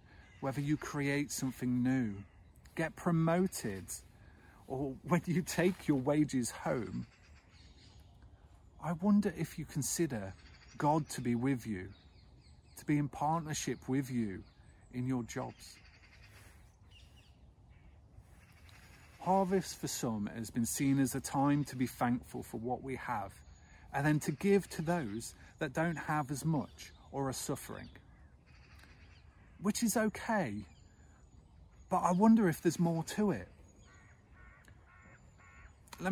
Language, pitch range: English, 95-155 Hz